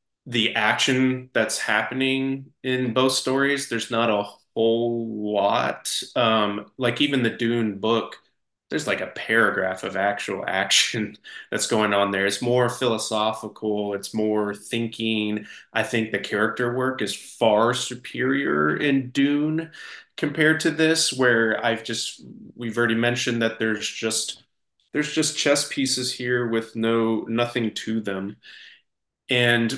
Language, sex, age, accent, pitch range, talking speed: English, male, 20-39, American, 105-125 Hz, 135 wpm